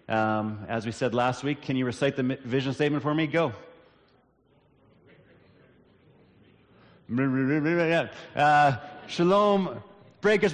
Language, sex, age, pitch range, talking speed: English, male, 30-49, 120-155 Hz, 110 wpm